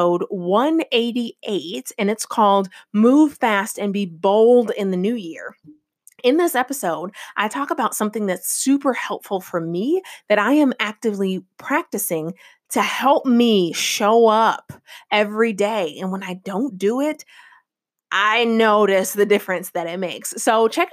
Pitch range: 190-235 Hz